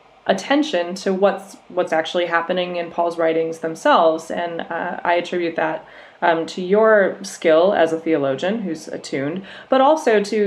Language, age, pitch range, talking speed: English, 20-39, 155-190 Hz, 155 wpm